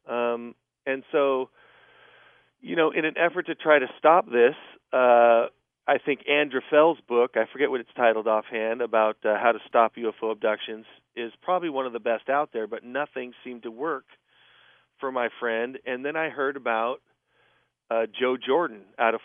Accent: American